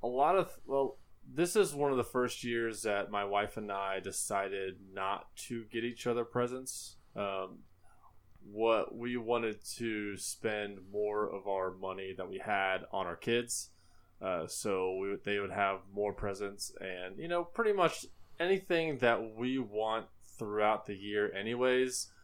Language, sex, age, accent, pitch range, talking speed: English, male, 20-39, American, 100-120 Hz, 165 wpm